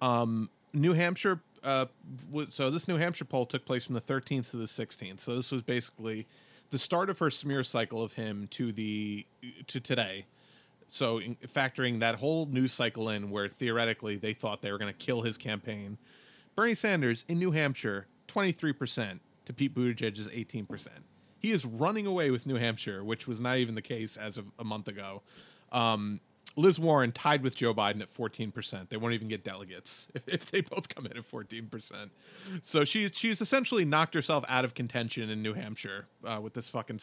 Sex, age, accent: male, 30-49, American